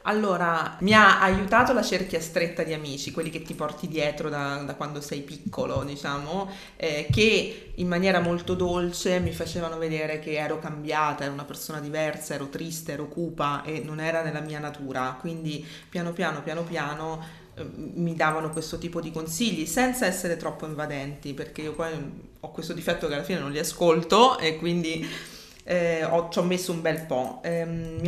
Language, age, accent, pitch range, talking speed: Italian, 30-49, native, 155-180 Hz, 185 wpm